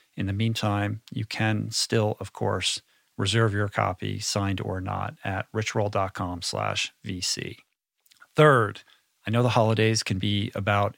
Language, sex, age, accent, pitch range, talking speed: English, male, 40-59, American, 105-125 Hz, 140 wpm